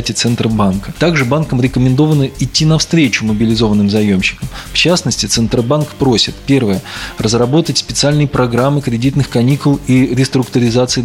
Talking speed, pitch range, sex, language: 110 wpm, 115-145 Hz, male, Russian